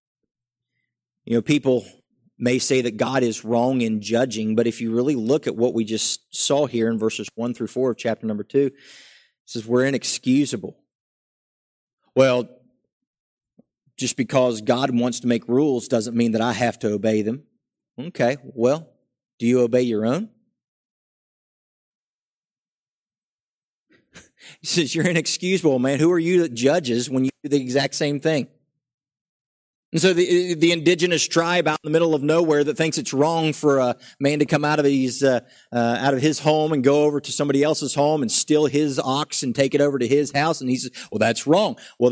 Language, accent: English, American